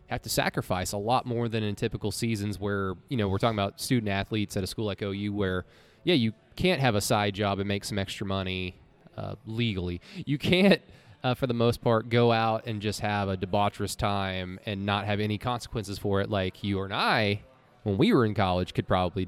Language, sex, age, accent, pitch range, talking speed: English, male, 20-39, American, 100-125 Hz, 220 wpm